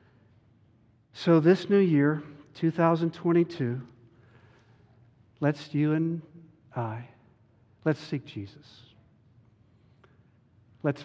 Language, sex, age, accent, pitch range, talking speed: English, male, 50-69, American, 115-145 Hz, 70 wpm